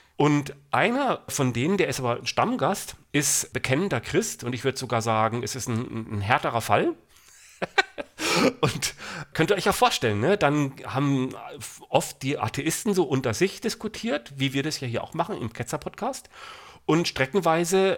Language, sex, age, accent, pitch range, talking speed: English, male, 40-59, German, 125-165 Hz, 165 wpm